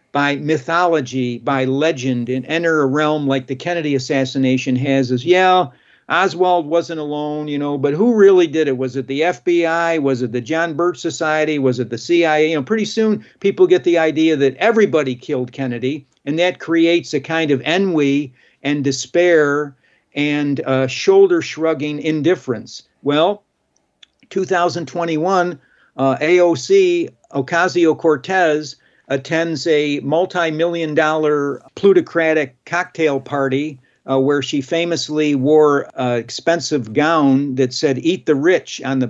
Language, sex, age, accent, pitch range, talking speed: English, male, 50-69, American, 135-170 Hz, 140 wpm